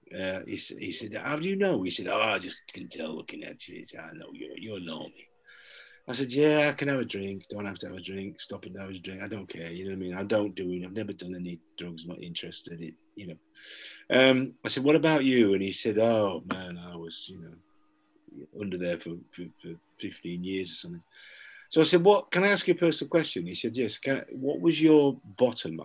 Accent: British